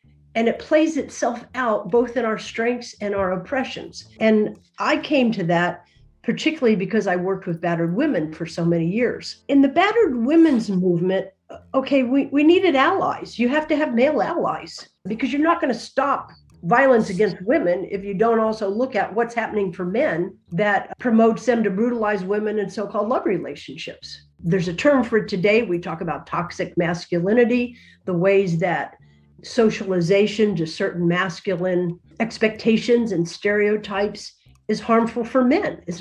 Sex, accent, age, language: female, American, 50-69, English